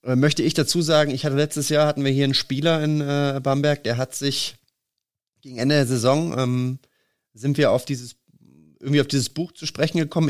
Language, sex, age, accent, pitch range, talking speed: German, male, 30-49, German, 130-155 Hz, 205 wpm